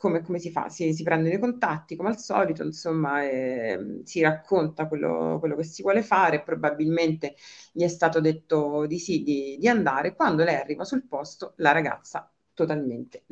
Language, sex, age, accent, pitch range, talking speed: Italian, female, 40-59, native, 155-185 Hz, 180 wpm